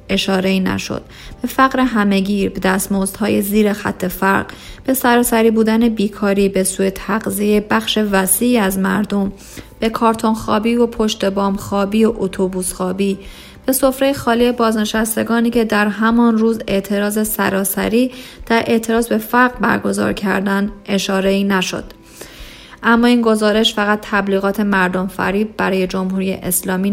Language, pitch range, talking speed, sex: Persian, 190-225 Hz, 130 wpm, female